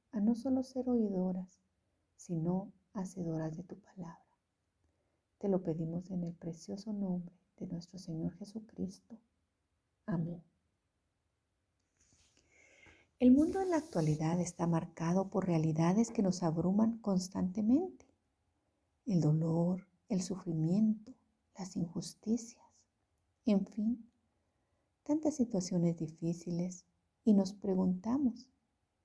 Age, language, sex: 50-69, Spanish, female